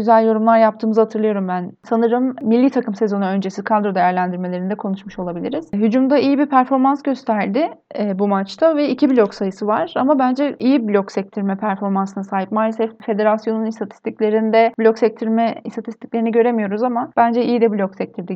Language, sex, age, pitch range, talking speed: Turkish, female, 30-49, 205-250 Hz, 150 wpm